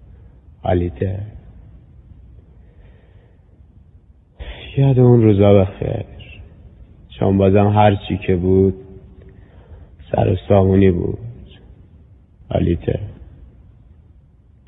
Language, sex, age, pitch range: Persian, male, 30-49, 95-105 Hz